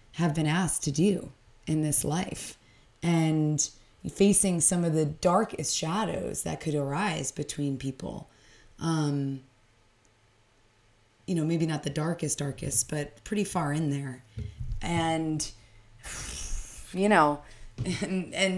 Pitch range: 130-170 Hz